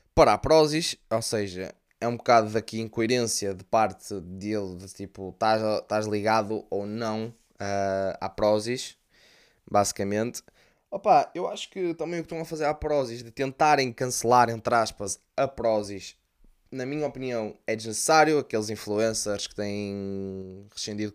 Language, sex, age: Portuguese, male, 20-39